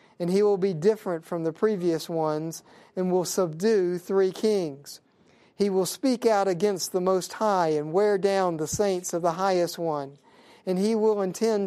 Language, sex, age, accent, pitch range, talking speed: English, male, 50-69, American, 170-205 Hz, 180 wpm